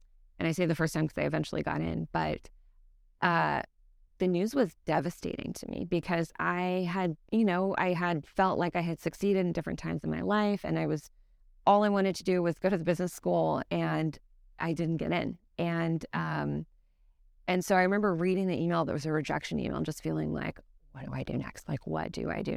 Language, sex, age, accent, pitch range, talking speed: English, female, 20-39, American, 140-180 Hz, 225 wpm